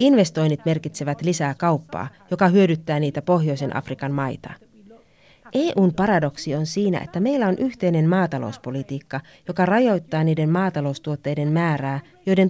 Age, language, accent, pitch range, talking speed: 30-49, Finnish, native, 145-195 Hz, 120 wpm